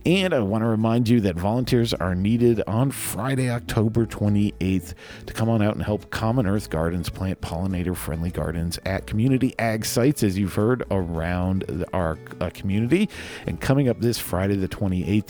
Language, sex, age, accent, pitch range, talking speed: English, male, 40-59, American, 90-120 Hz, 175 wpm